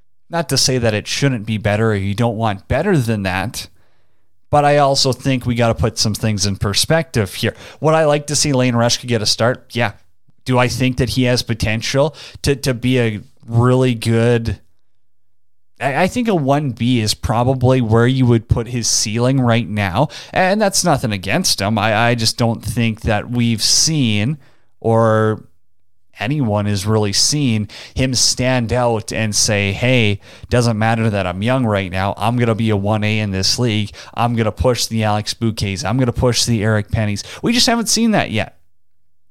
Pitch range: 105-130 Hz